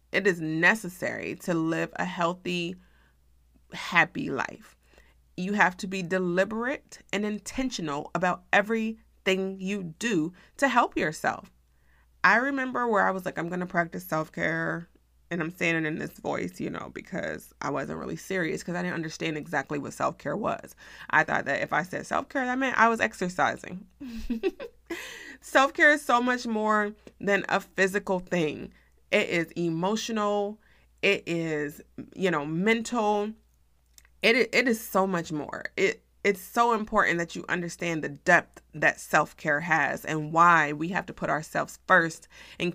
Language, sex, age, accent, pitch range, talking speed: English, female, 30-49, American, 170-215 Hz, 155 wpm